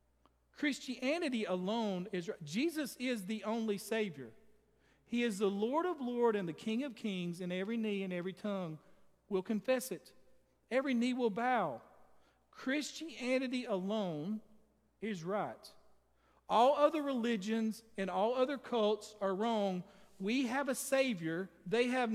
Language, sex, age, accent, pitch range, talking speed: English, male, 50-69, American, 185-240 Hz, 140 wpm